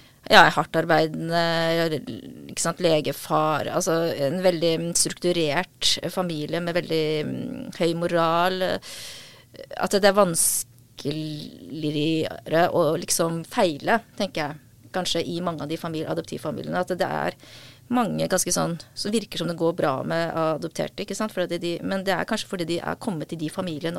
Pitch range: 150-175 Hz